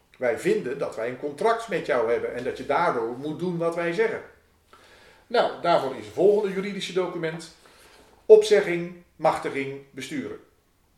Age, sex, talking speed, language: 40-59, male, 155 wpm, Dutch